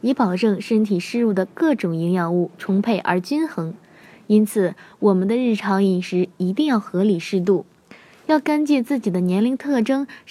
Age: 20-39